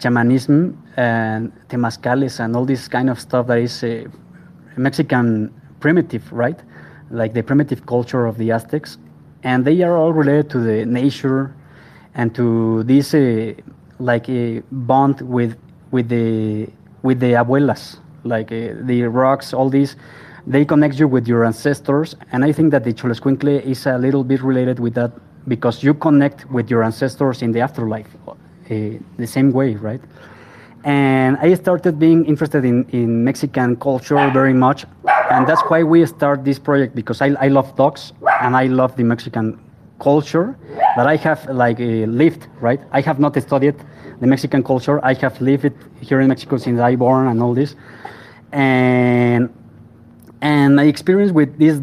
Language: English